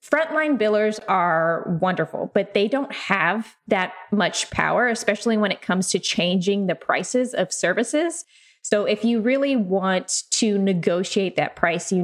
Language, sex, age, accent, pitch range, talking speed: English, female, 20-39, American, 180-225 Hz, 155 wpm